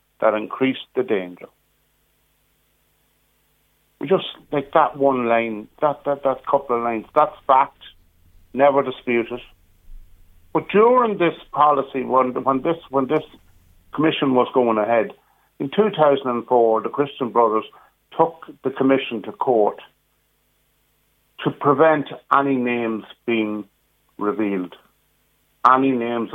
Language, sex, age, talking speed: English, male, 60-79, 115 wpm